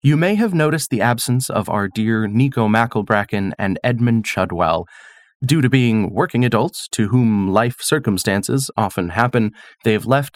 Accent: American